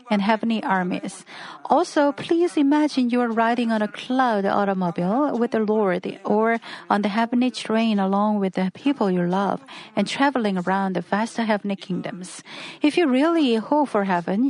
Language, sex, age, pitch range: Korean, female, 40-59, 195-250 Hz